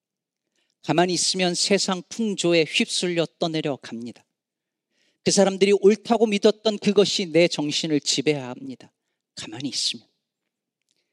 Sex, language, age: male, Korean, 40-59